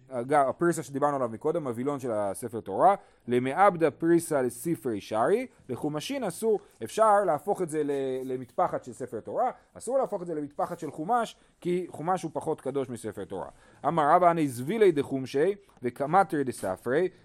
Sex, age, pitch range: male, 30-49, 135-190 Hz